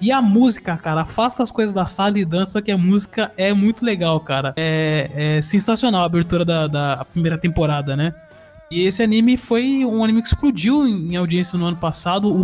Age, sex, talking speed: 20-39, male, 205 wpm